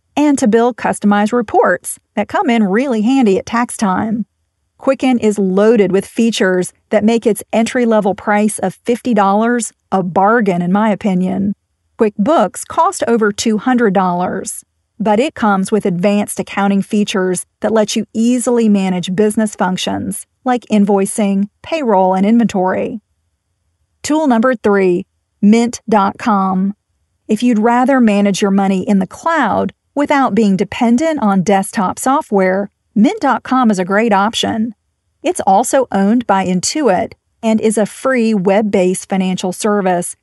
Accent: American